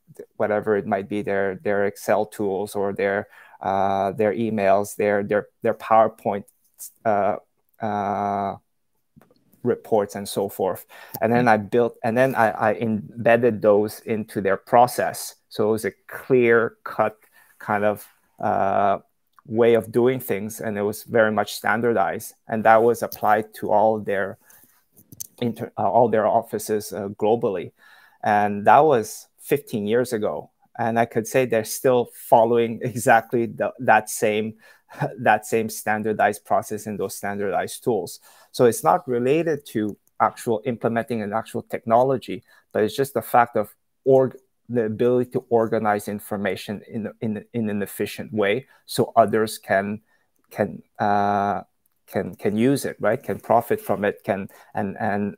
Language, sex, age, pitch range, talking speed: English, male, 20-39, 100-115 Hz, 150 wpm